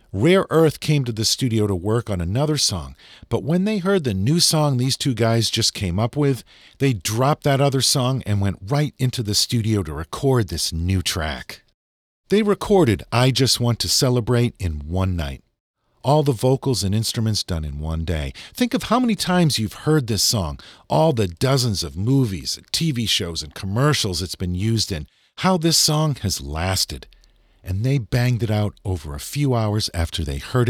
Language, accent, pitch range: English, American, 85-130 Hz